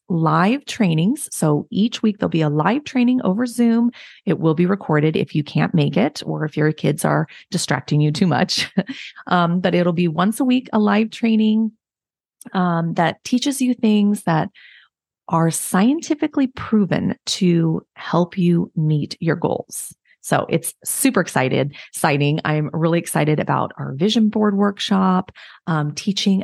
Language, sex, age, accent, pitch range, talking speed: English, female, 30-49, American, 165-220 Hz, 160 wpm